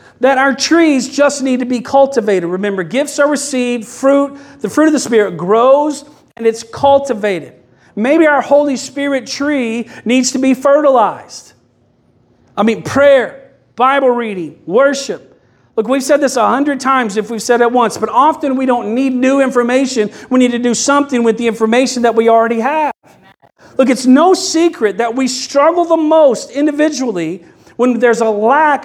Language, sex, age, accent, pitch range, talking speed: English, male, 50-69, American, 220-275 Hz, 170 wpm